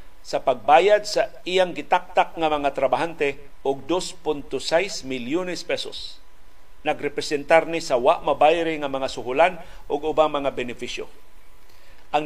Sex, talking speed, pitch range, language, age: male, 120 wpm, 140-180 Hz, Filipino, 50-69